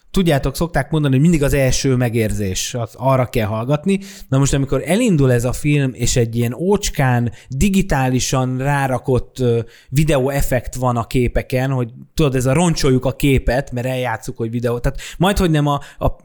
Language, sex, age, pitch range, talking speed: Hungarian, male, 20-39, 120-145 Hz, 170 wpm